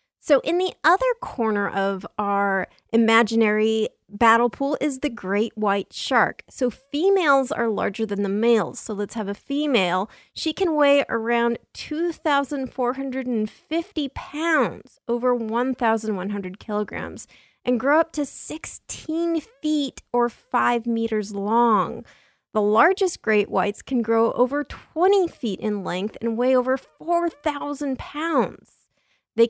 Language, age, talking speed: English, 30-49, 130 wpm